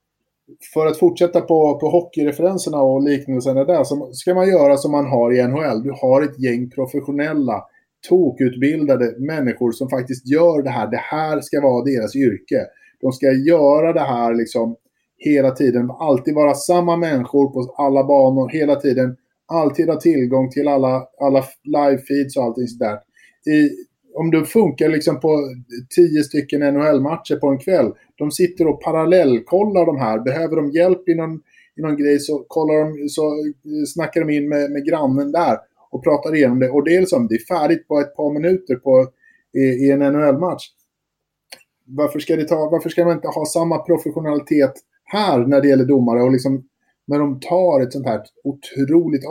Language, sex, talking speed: Swedish, male, 175 wpm